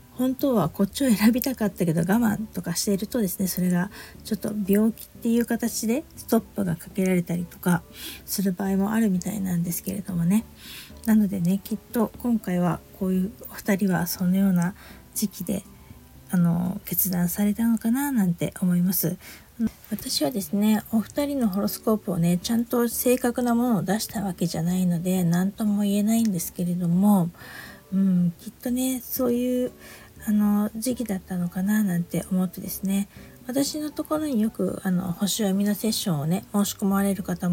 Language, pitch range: Japanese, 180-225 Hz